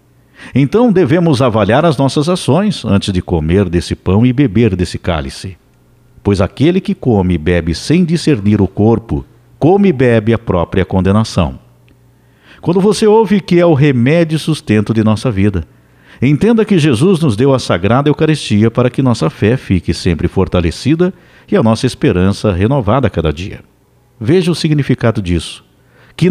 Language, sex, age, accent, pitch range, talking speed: Portuguese, male, 60-79, Brazilian, 90-140 Hz, 160 wpm